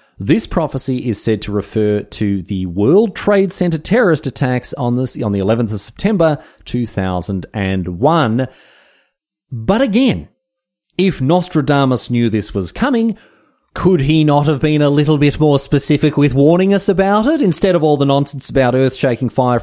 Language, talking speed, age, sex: English, 155 wpm, 30-49, male